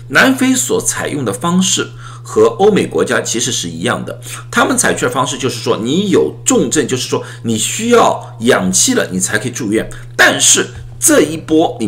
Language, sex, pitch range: Chinese, male, 120-165 Hz